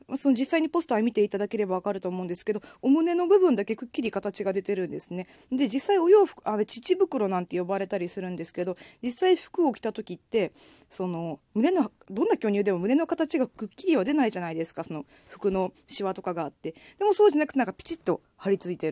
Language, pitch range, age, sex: Japanese, 185-285 Hz, 20-39, female